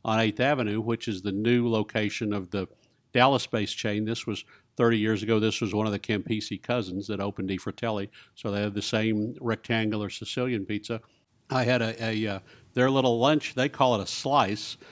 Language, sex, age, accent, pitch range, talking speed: English, male, 50-69, American, 105-120 Hz, 195 wpm